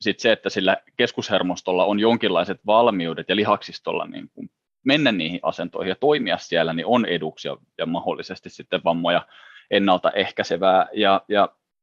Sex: male